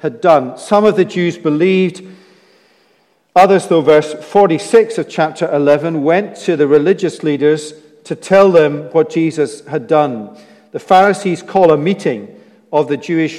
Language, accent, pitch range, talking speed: English, British, 140-185 Hz, 150 wpm